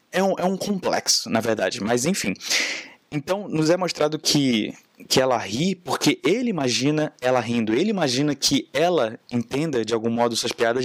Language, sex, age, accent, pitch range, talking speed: Portuguese, male, 20-39, Brazilian, 110-150 Hz, 175 wpm